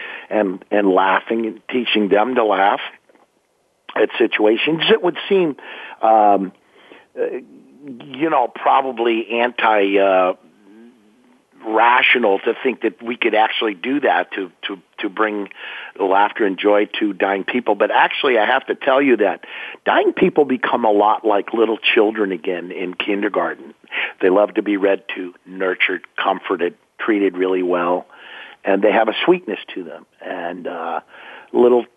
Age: 50-69